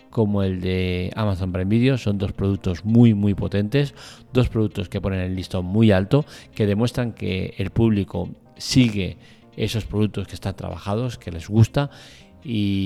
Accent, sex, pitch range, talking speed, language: Spanish, male, 95-115 Hz, 165 wpm, Spanish